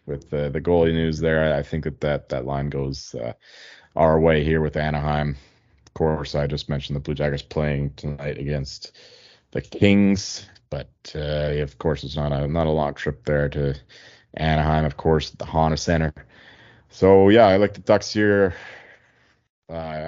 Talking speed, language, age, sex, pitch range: 175 wpm, English, 30-49, male, 75-90 Hz